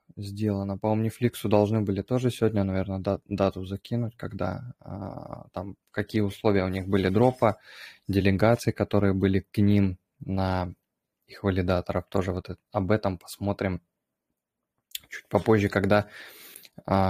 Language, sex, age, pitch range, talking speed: Russian, male, 20-39, 100-110 Hz, 125 wpm